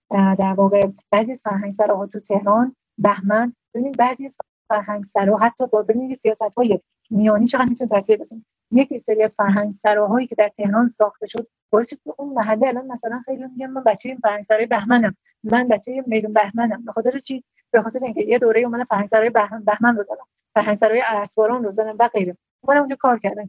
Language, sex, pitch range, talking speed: Persian, female, 210-250 Hz, 170 wpm